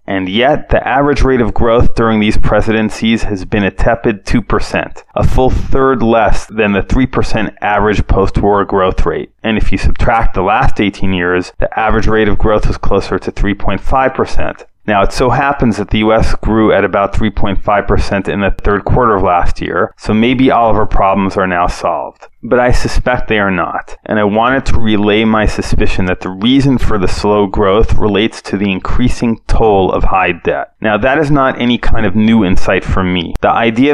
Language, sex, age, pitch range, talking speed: English, male, 30-49, 100-115 Hz, 195 wpm